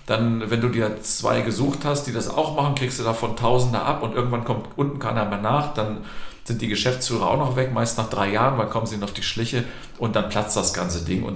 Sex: male